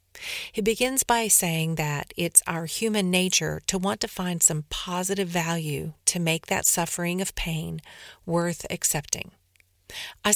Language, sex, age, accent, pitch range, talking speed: English, female, 50-69, American, 160-195 Hz, 145 wpm